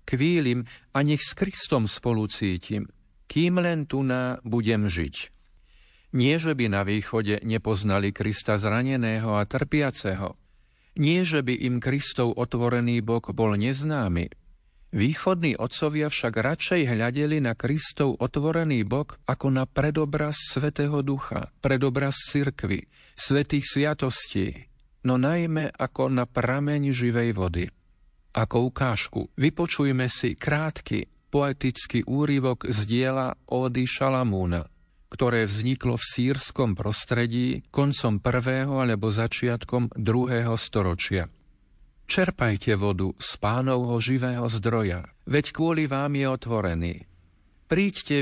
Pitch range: 110-140 Hz